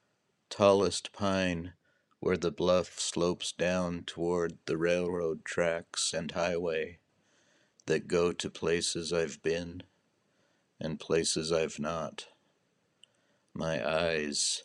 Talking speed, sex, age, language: 100 wpm, male, 60-79, English